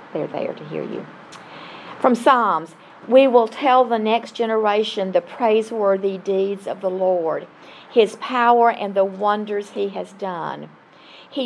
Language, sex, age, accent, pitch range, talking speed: English, female, 50-69, American, 185-225 Hz, 145 wpm